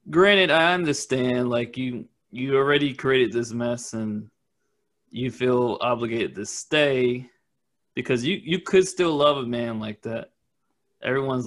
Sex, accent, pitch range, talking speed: male, American, 120-155 Hz, 140 wpm